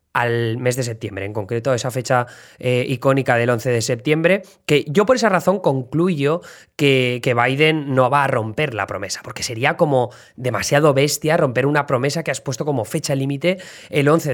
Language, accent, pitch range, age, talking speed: Spanish, Spanish, 130-155 Hz, 20-39, 195 wpm